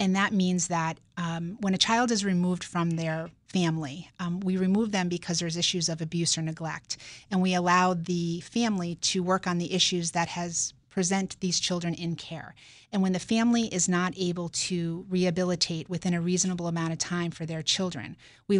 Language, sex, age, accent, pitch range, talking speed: English, female, 30-49, American, 165-185 Hz, 195 wpm